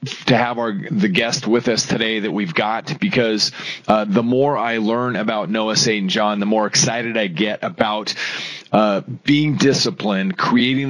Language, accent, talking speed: English, American, 170 wpm